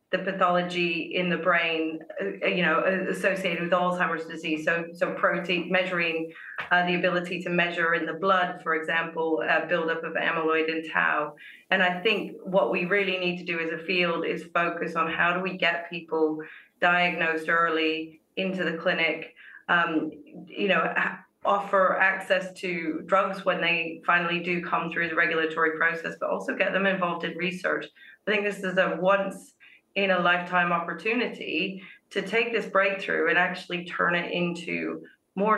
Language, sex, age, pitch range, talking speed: English, female, 30-49, 165-185 Hz, 170 wpm